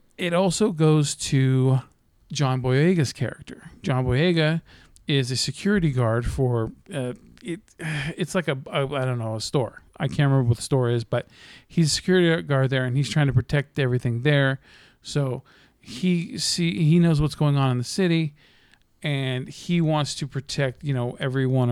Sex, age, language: male, 40-59, English